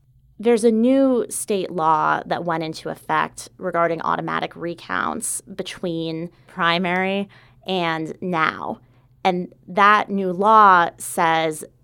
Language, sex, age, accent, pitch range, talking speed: English, female, 30-49, American, 160-185 Hz, 105 wpm